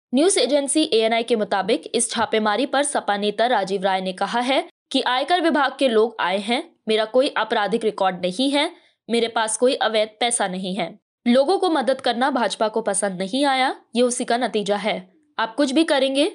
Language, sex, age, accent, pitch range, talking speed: Hindi, female, 20-39, native, 210-270 Hz, 195 wpm